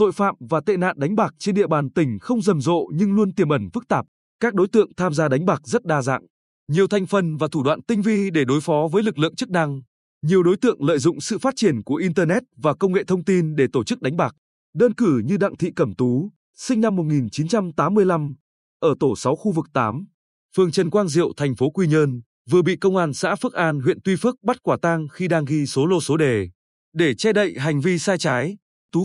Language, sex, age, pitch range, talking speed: Vietnamese, male, 20-39, 150-200 Hz, 245 wpm